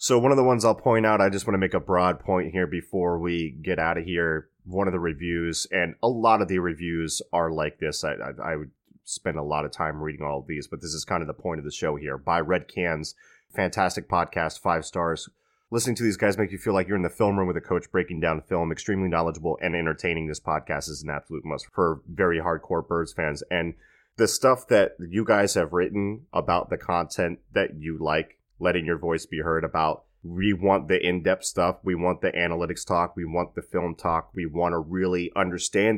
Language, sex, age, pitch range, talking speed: English, male, 30-49, 85-95 Hz, 235 wpm